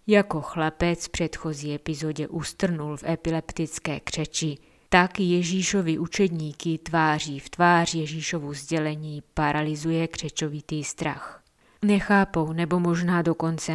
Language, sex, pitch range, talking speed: Czech, female, 155-180 Hz, 105 wpm